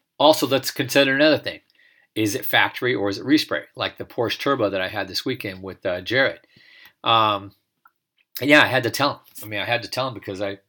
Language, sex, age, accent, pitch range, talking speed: English, male, 40-59, American, 100-150 Hz, 225 wpm